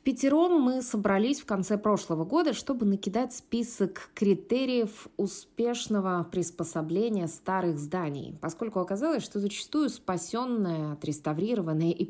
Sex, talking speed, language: female, 115 wpm, Russian